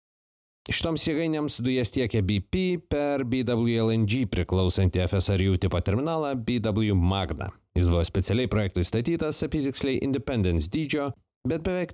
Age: 30-49